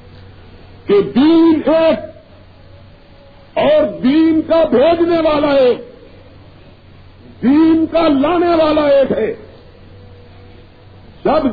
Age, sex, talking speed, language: 50-69, male, 85 wpm, Urdu